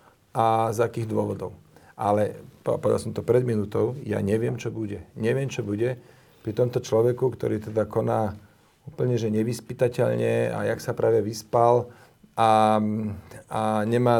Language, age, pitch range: Slovak, 40-59, 105-120 Hz